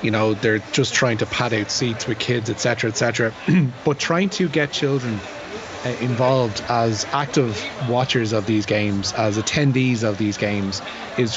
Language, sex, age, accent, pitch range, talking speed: English, male, 30-49, Irish, 110-135 Hz, 170 wpm